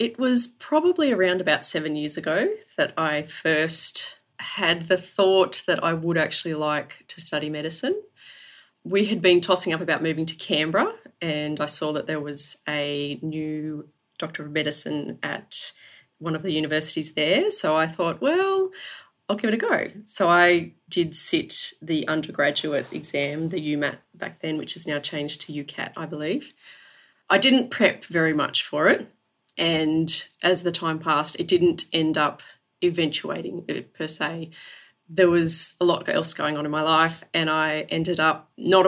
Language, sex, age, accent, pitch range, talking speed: English, female, 20-39, Australian, 155-185 Hz, 170 wpm